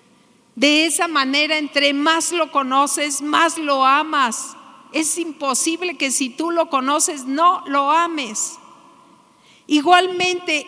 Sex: female